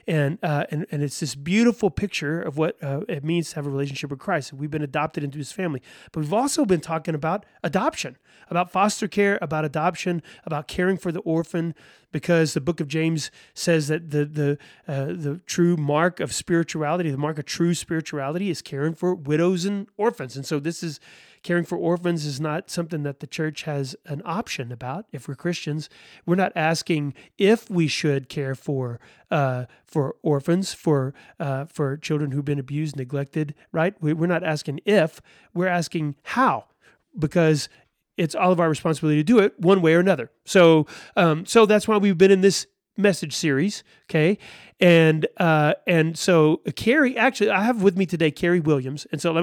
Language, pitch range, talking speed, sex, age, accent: English, 150-195 Hz, 190 wpm, male, 30-49, American